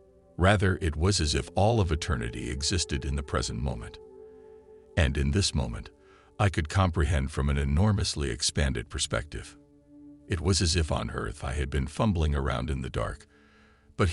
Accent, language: American, English